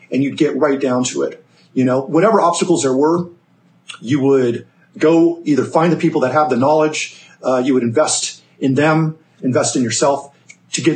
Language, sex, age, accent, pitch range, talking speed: English, male, 40-59, American, 135-170 Hz, 190 wpm